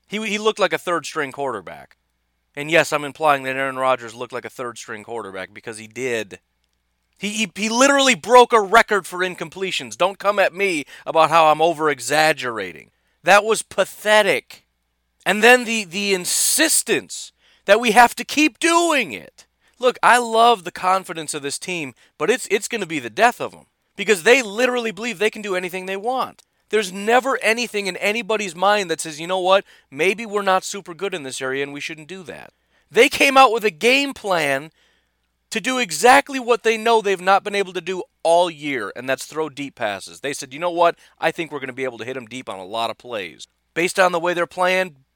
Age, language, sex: 30-49, English, male